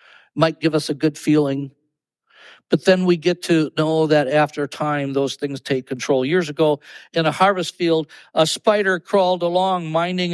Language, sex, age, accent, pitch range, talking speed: English, male, 60-79, American, 165-205 Hz, 175 wpm